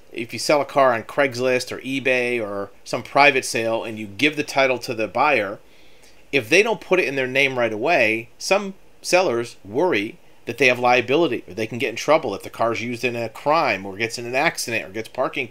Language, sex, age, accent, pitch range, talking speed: English, male, 40-59, American, 115-145 Hz, 230 wpm